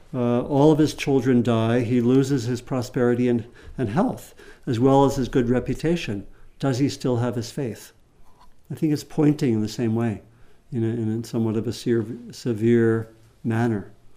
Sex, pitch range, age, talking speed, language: male, 115-145 Hz, 60-79, 190 wpm, English